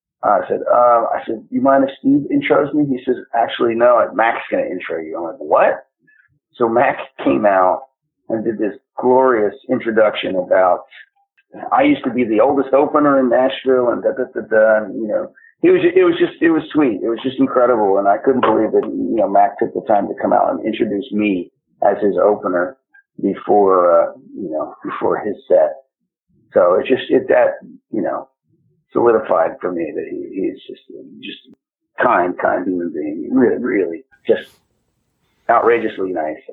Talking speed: 185 wpm